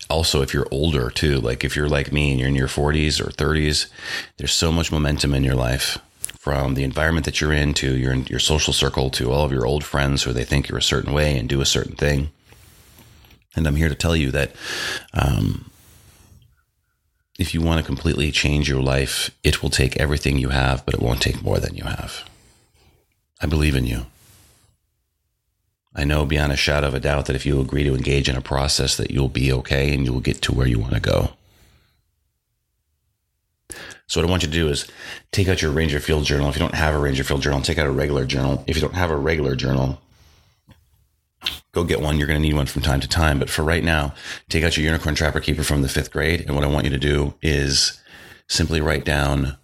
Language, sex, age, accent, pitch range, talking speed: English, male, 30-49, American, 70-80 Hz, 230 wpm